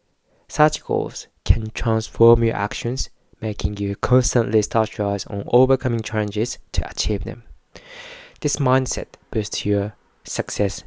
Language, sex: English, male